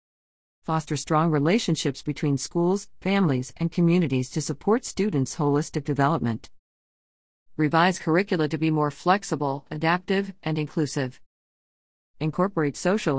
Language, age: English, 50-69